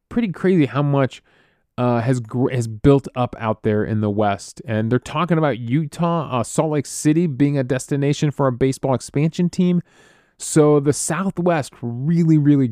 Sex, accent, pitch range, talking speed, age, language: male, American, 125-170 Hz, 175 wpm, 20-39, English